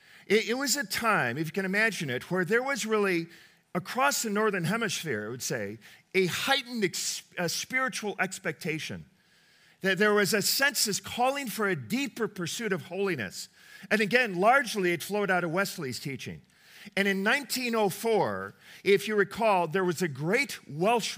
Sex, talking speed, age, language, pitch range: male, 160 wpm, 50-69, English, 175-225 Hz